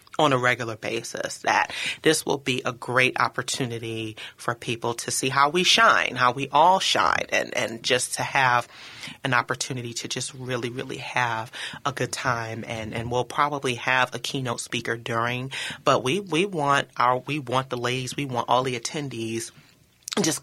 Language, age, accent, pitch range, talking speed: English, 30-49, American, 115-135 Hz, 180 wpm